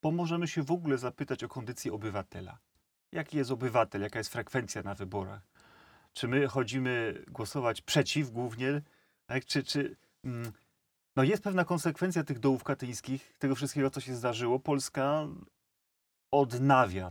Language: Polish